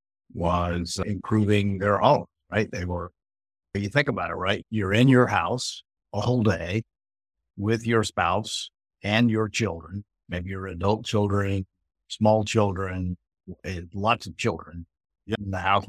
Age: 50-69